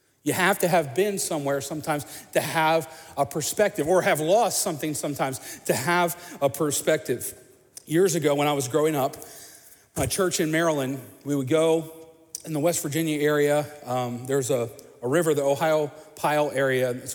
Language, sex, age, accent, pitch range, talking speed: English, male, 40-59, American, 145-180 Hz, 170 wpm